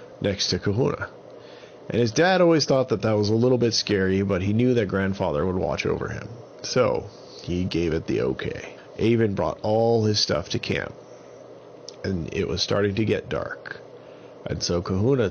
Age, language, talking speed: 40-59, English, 185 wpm